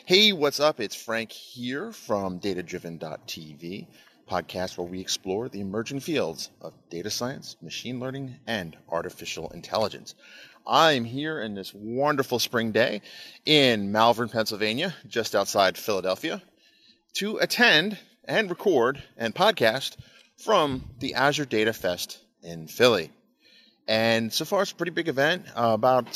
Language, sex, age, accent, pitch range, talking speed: English, male, 30-49, American, 105-140 Hz, 140 wpm